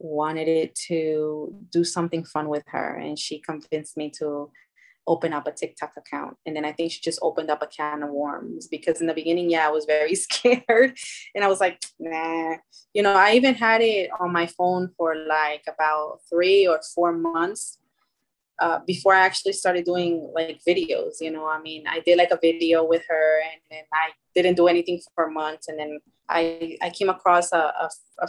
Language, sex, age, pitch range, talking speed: English, female, 20-39, 155-175 Hz, 205 wpm